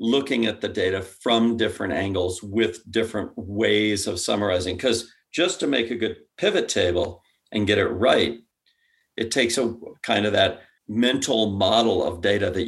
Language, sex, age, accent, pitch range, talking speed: English, male, 50-69, American, 95-120 Hz, 165 wpm